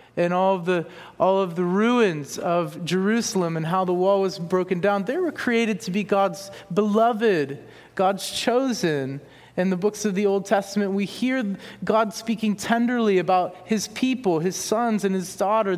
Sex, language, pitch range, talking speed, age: male, English, 170-210 Hz, 175 wpm, 30-49